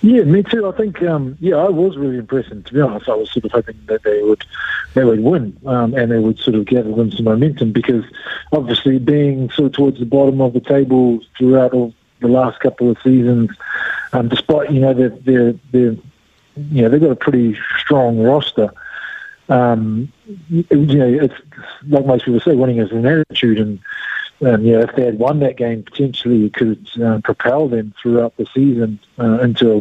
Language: English